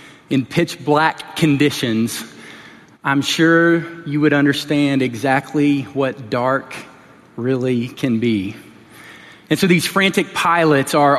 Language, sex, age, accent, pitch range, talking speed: English, male, 30-49, American, 130-160 Hz, 115 wpm